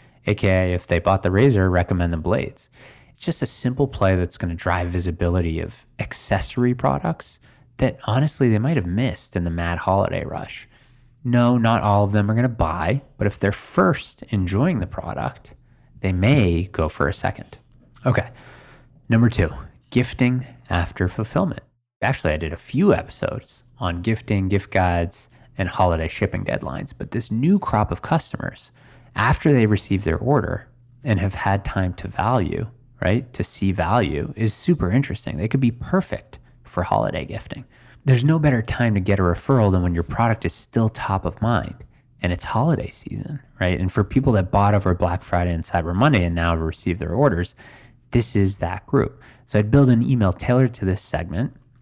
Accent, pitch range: American, 90-125 Hz